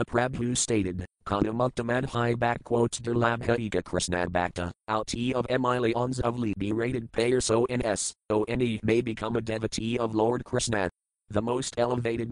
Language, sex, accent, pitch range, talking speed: English, male, American, 105-125 Hz, 155 wpm